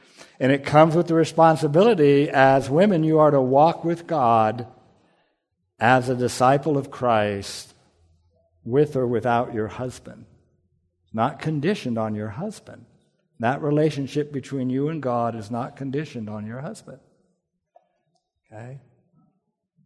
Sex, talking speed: male, 125 wpm